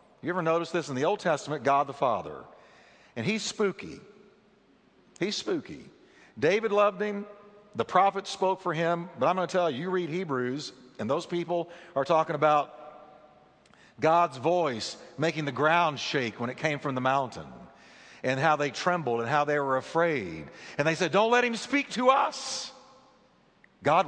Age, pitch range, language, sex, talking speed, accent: 50-69, 130-180 Hz, English, male, 175 wpm, American